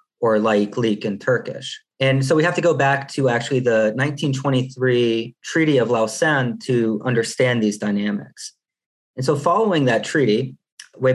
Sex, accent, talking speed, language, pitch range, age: male, American, 155 wpm, English, 110-135 Hz, 30-49